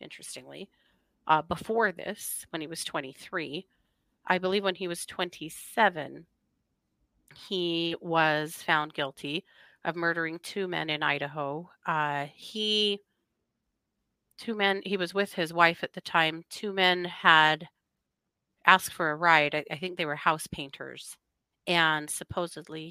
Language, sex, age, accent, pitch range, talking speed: English, female, 30-49, American, 165-205 Hz, 135 wpm